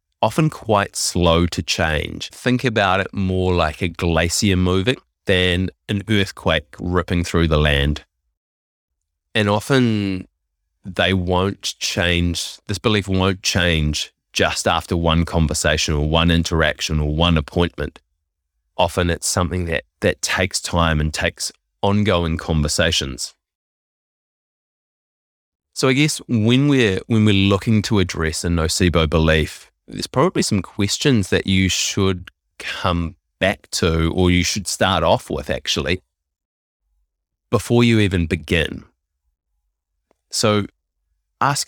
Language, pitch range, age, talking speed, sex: English, 75-100 Hz, 20-39, 125 wpm, male